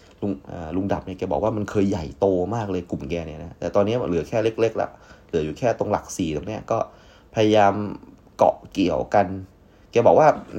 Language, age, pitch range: Thai, 20-39, 90-110 Hz